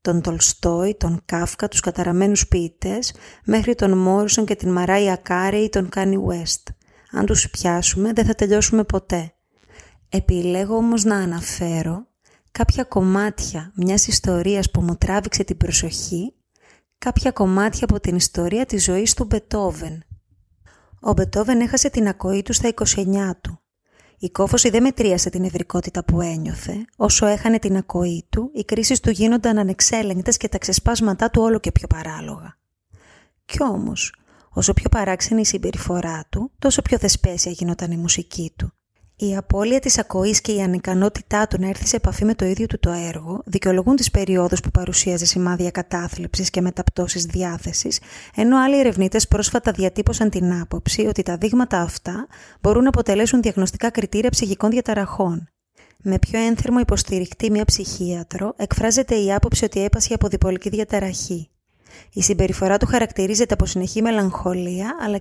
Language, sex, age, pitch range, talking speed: Greek, female, 30-49, 180-220 Hz, 150 wpm